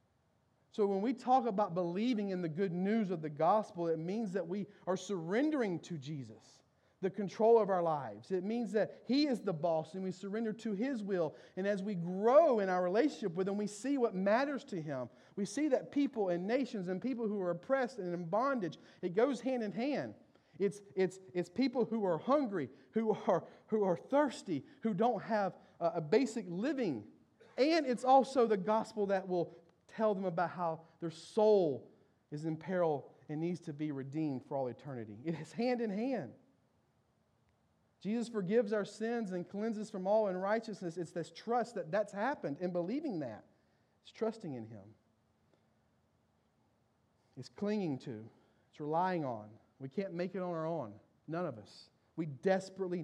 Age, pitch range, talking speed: 40-59, 160-220 Hz, 180 wpm